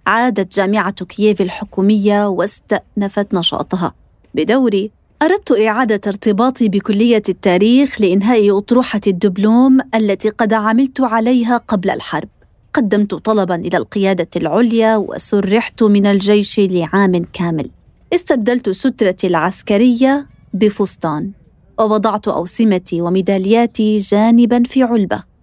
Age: 20-39